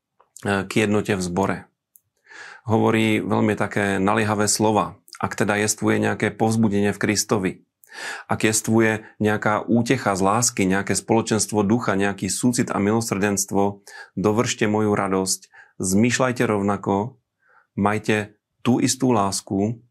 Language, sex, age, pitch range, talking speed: Slovak, male, 30-49, 100-110 Hz, 115 wpm